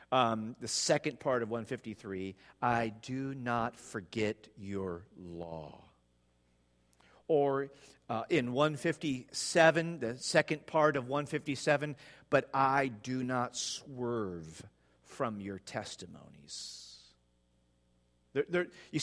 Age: 50-69